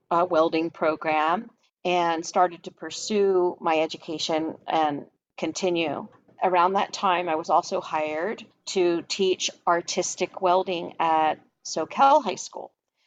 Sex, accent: female, American